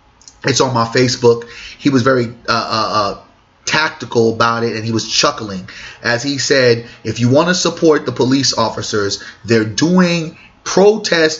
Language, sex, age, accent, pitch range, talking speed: English, male, 30-49, American, 115-145 Hz, 160 wpm